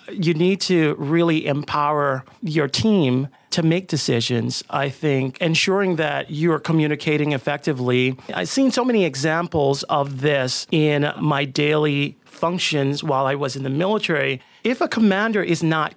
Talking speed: 150 wpm